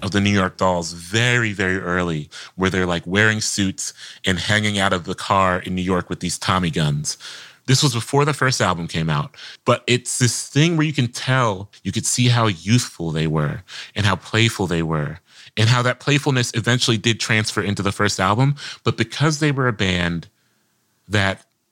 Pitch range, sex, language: 90-115 Hz, male, English